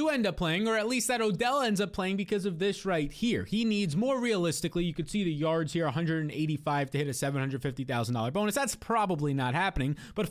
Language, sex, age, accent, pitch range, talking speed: English, male, 30-49, American, 160-220 Hz, 210 wpm